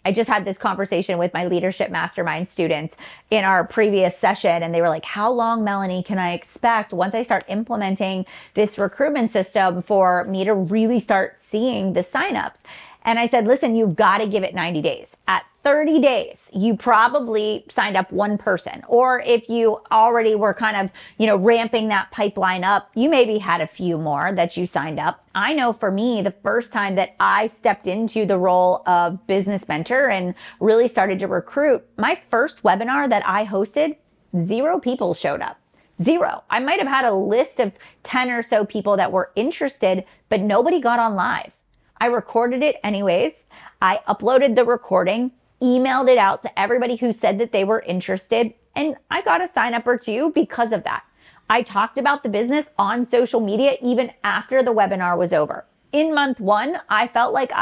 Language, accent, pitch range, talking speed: English, American, 190-240 Hz, 190 wpm